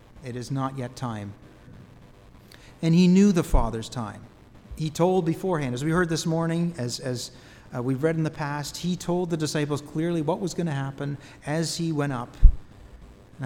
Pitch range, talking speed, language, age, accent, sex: 120-160 Hz, 185 wpm, English, 40-59, American, male